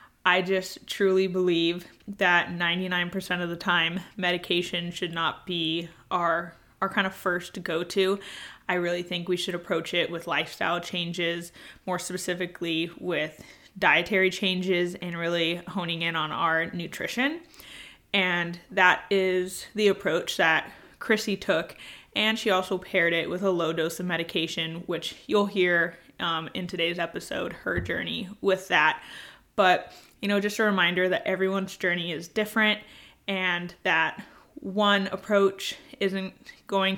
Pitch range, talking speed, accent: 175-195 Hz, 145 wpm, American